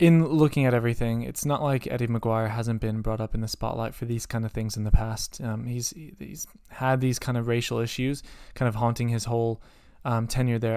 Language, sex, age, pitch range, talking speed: English, male, 20-39, 115-130 Hz, 230 wpm